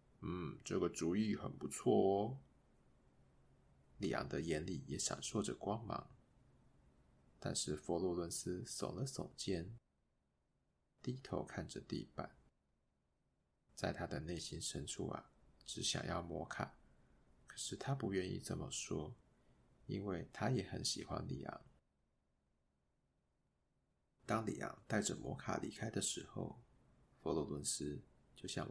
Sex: male